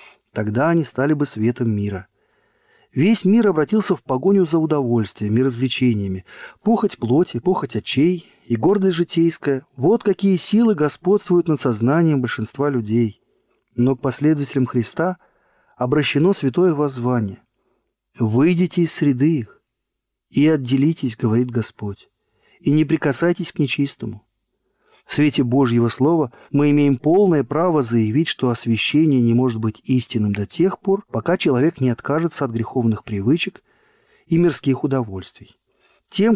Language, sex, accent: Russian, male, native